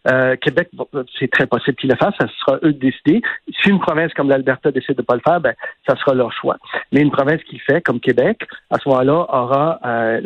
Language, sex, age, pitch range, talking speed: French, male, 50-69, 130-170 Hz, 250 wpm